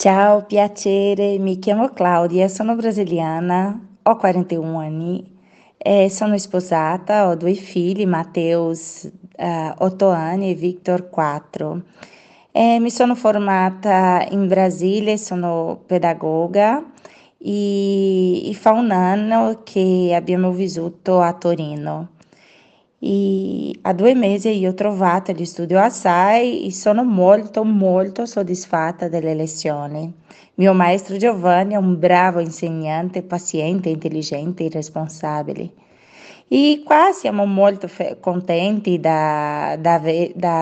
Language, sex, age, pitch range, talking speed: Italian, female, 20-39, 170-210 Hz, 115 wpm